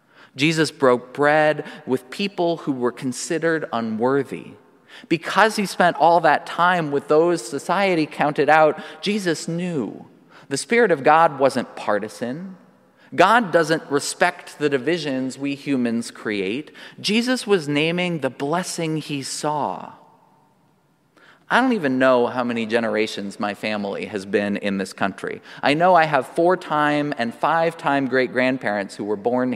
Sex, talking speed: male, 140 wpm